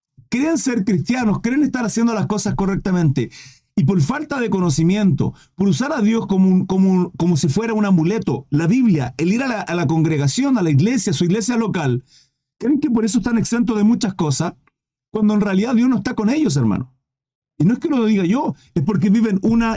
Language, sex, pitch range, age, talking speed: Spanish, male, 170-230 Hz, 40-59, 220 wpm